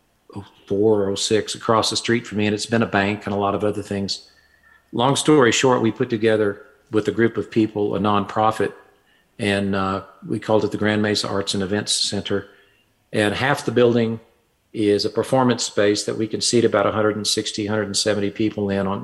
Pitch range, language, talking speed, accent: 100-115 Hz, English, 190 wpm, American